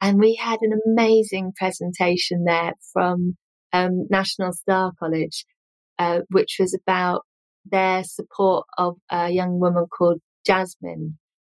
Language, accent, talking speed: English, British, 125 wpm